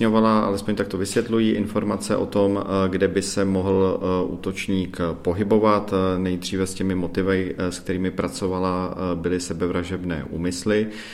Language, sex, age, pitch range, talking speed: Czech, male, 40-59, 85-95 Hz, 125 wpm